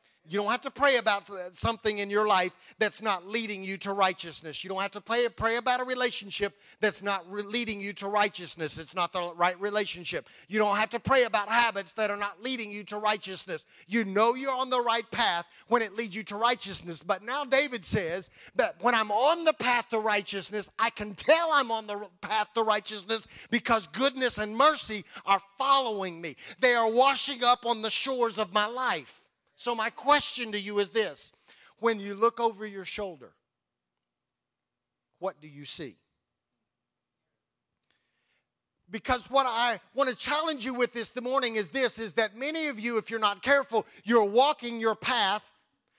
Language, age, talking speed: English, 40-59, 185 wpm